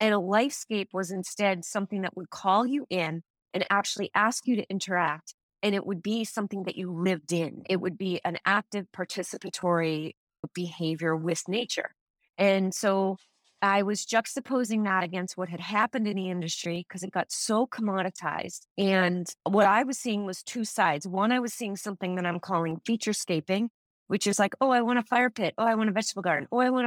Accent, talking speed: American, 200 wpm